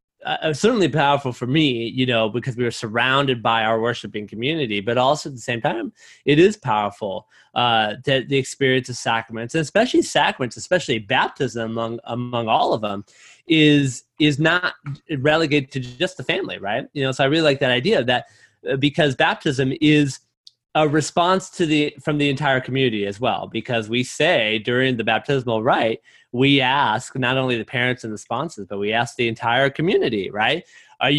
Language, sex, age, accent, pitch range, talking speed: English, male, 20-39, American, 115-145 Hz, 185 wpm